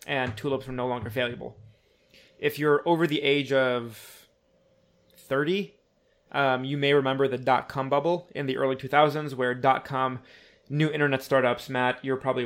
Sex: male